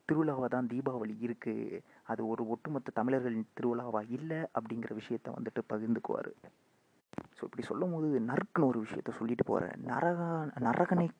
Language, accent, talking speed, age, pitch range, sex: Tamil, native, 135 wpm, 30-49, 115-145 Hz, male